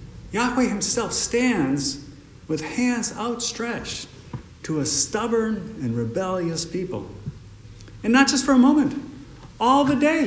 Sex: male